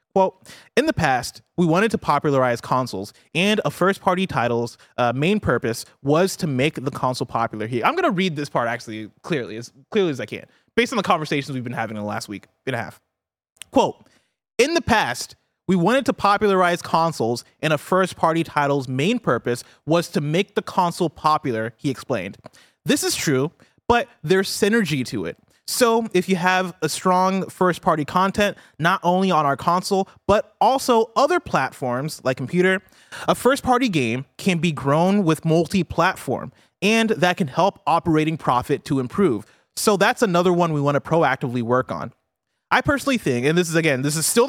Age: 20-39